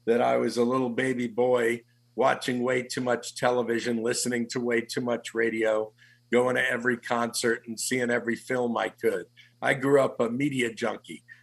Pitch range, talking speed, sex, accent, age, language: 115-130 Hz, 180 wpm, male, American, 50-69, English